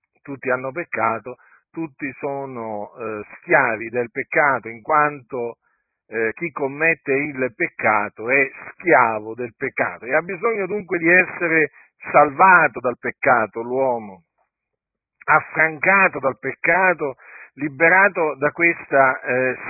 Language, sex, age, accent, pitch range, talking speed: Italian, male, 50-69, native, 125-160 Hz, 115 wpm